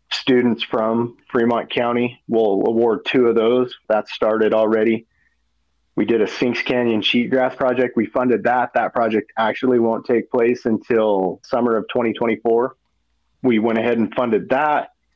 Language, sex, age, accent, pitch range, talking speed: English, male, 40-59, American, 110-125 Hz, 155 wpm